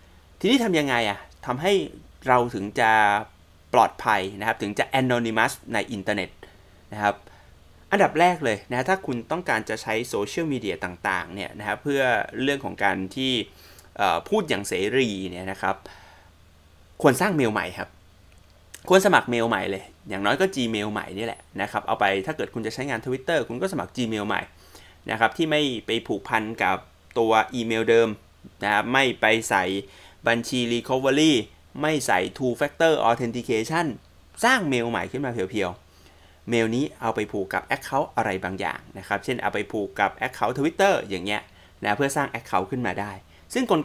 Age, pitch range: 20-39, 95-125 Hz